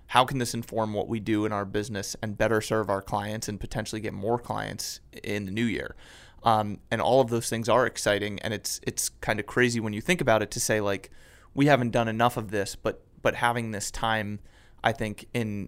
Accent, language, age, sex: American, English, 30-49, male